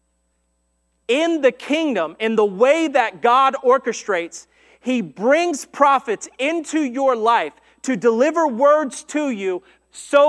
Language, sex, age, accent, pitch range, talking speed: English, male, 30-49, American, 185-265 Hz, 120 wpm